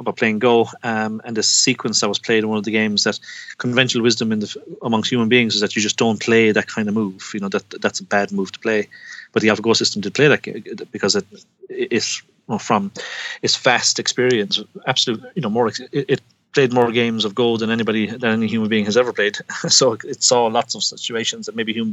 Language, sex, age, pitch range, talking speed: English, male, 30-49, 105-135 Hz, 240 wpm